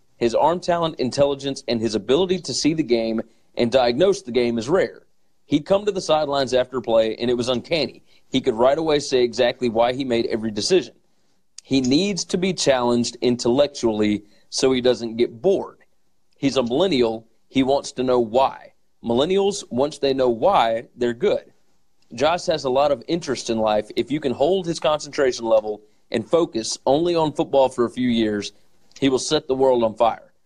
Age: 40-59